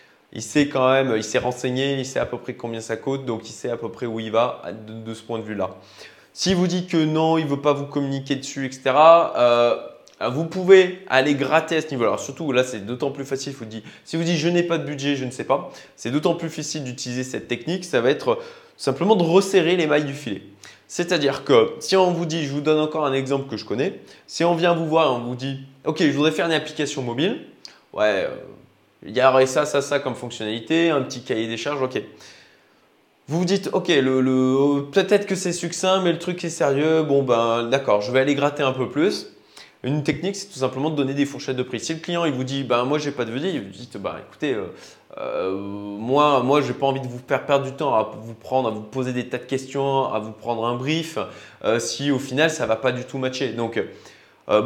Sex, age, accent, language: male, 20-39, French, French